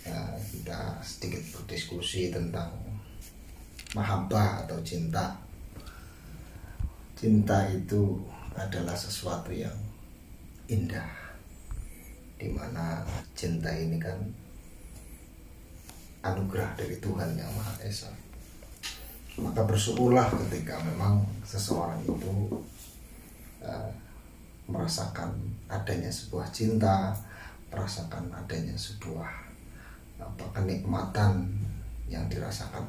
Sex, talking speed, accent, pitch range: male, 75 wpm, native, 85-105 Hz